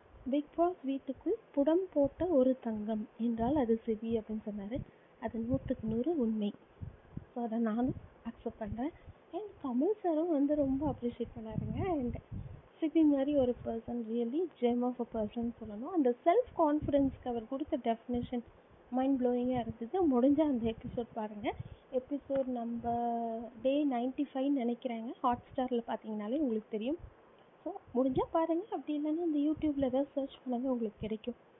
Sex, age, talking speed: female, 30-49, 135 wpm